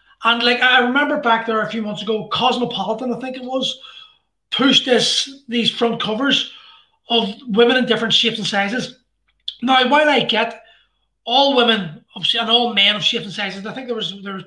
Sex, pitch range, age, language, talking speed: male, 210-250 Hz, 20-39, English, 190 wpm